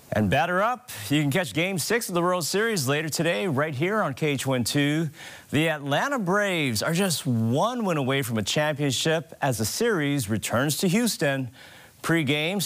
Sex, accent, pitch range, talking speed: male, American, 120-165 Hz, 175 wpm